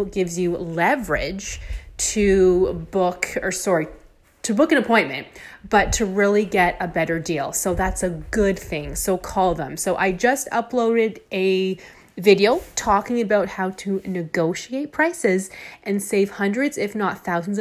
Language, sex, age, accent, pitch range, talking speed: English, female, 30-49, American, 180-220 Hz, 150 wpm